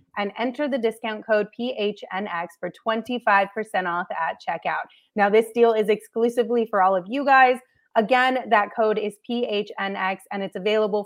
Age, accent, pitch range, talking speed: 30-49, American, 195-235 Hz, 155 wpm